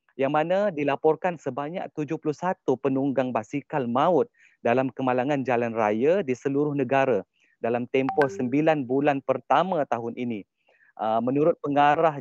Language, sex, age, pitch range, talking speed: Malay, male, 30-49, 125-155 Hz, 120 wpm